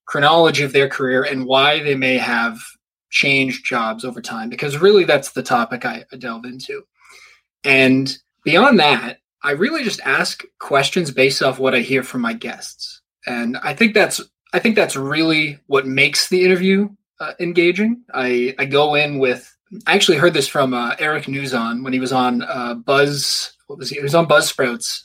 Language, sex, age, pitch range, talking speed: English, male, 20-39, 130-180 Hz, 185 wpm